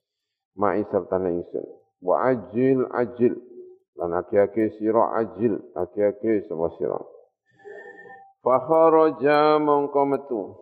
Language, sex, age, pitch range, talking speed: Indonesian, male, 50-69, 100-160 Hz, 90 wpm